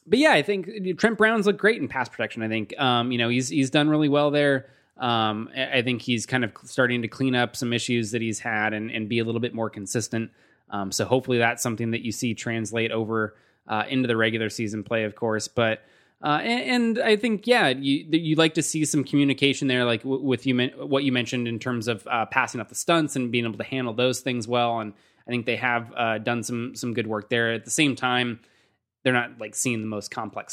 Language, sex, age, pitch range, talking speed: English, male, 20-39, 110-130 Hz, 240 wpm